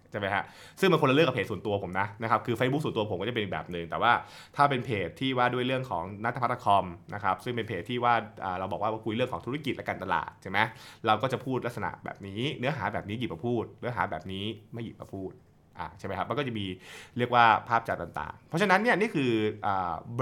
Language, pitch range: Thai, 105-135 Hz